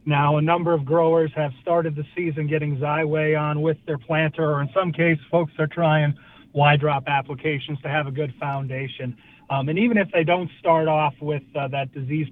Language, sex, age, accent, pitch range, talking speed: English, male, 40-59, American, 135-160 Hz, 205 wpm